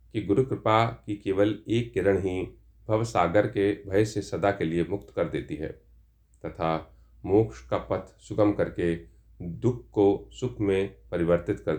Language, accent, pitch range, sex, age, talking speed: Hindi, native, 95-110 Hz, male, 40-59, 150 wpm